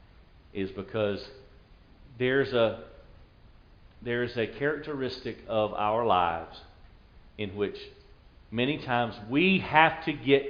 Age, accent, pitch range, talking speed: 50-69, American, 105-140 Hz, 105 wpm